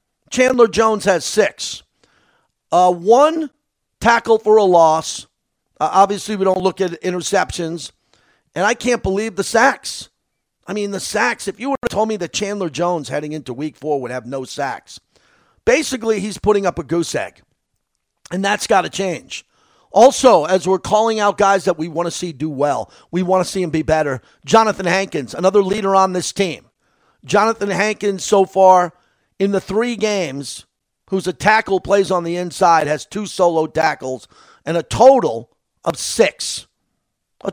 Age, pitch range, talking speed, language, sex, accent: 50-69, 170-215 Hz, 175 wpm, English, male, American